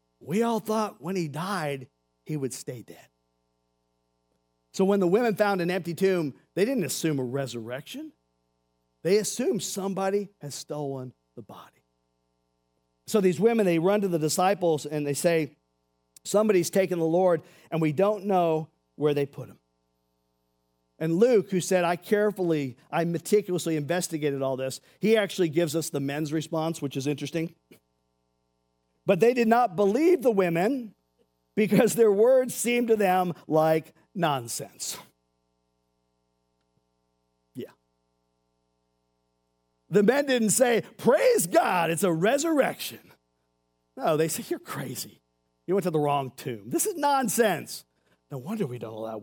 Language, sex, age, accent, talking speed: English, male, 50-69, American, 145 wpm